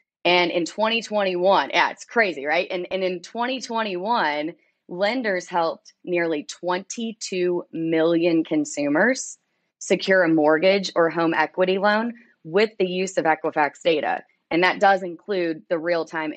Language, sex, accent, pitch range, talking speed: English, female, American, 160-190 Hz, 130 wpm